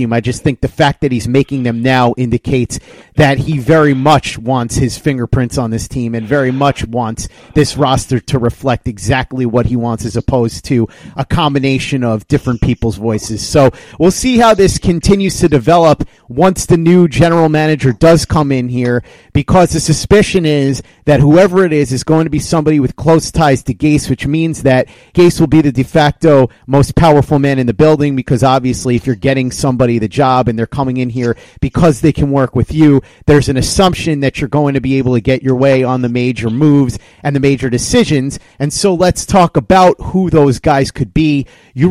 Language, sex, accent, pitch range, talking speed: English, male, American, 130-155 Hz, 205 wpm